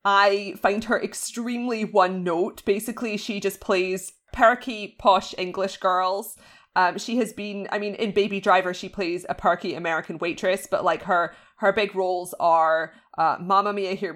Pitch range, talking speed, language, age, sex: 180-210 Hz, 170 wpm, English, 20-39, female